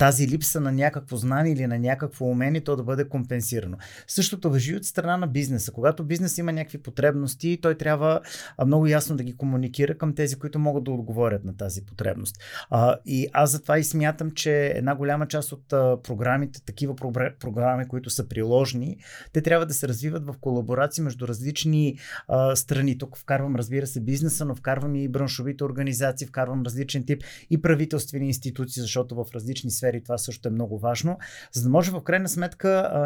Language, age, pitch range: Bulgarian, 30-49, 130-160 Hz